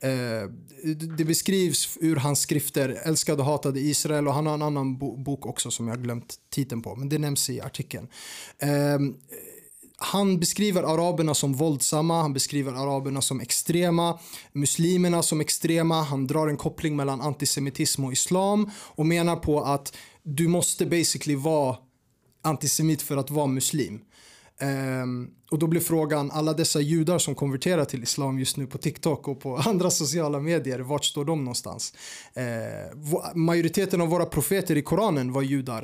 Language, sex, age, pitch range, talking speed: Swedish, male, 30-49, 135-170 Hz, 155 wpm